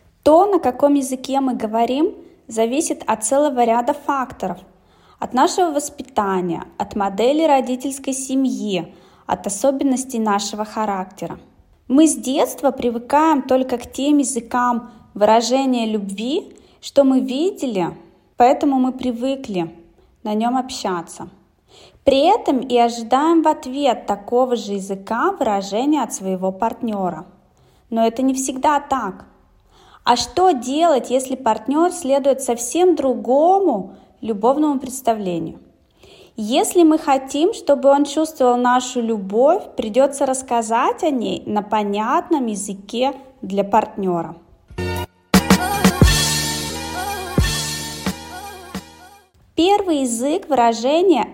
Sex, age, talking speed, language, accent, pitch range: female, 20-39, 105 wpm, Russian, native, 215-285 Hz